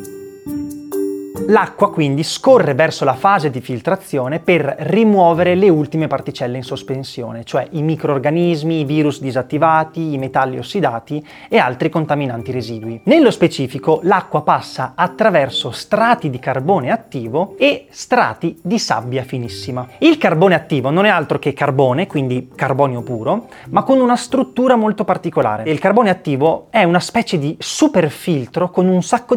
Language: Italian